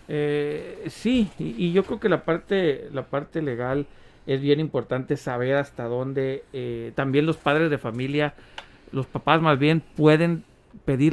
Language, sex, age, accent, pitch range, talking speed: Spanish, male, 50-69, Mexican, 125-155 Hz, 160 wpm